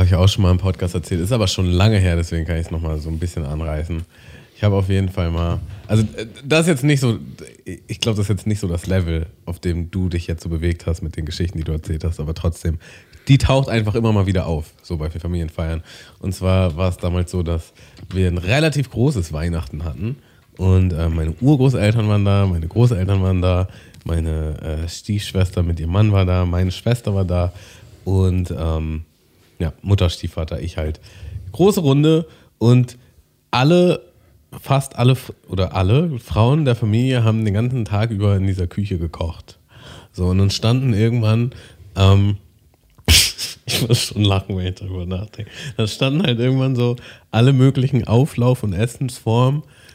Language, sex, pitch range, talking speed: German, male, 90-115 Hz, 185 wpm